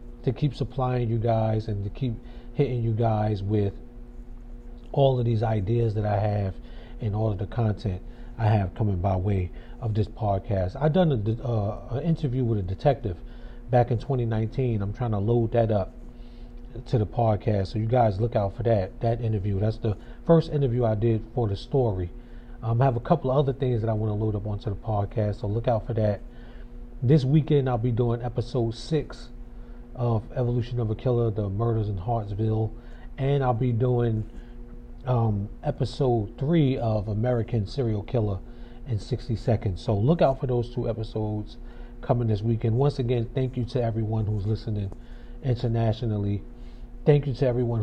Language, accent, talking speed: English, American, 180 wpm